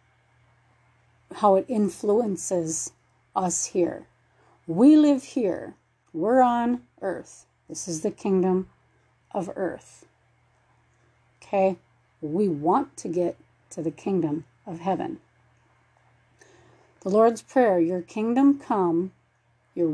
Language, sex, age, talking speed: English, female, 40-59, 100 wpm